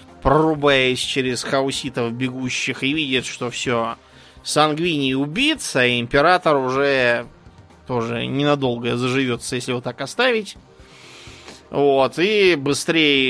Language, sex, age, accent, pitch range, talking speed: Russian, male, 20-39, native, 120-150 Hz, 105 wpm